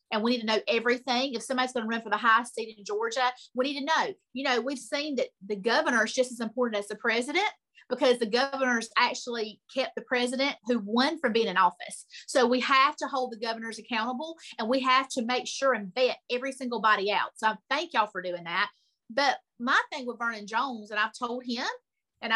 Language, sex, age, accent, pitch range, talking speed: English, female, 30-49, American, 225-275 Hz, 230 wpm